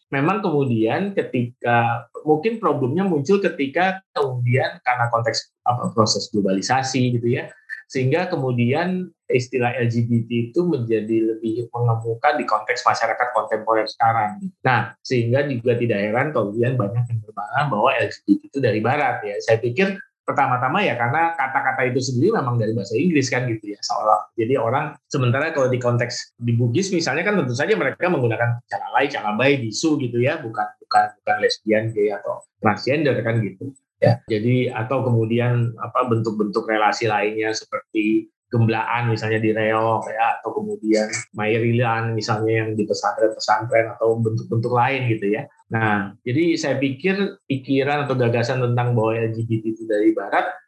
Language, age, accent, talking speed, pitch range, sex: Indonesian, 20-39, native, 155 wpm, 115-145 Hz, male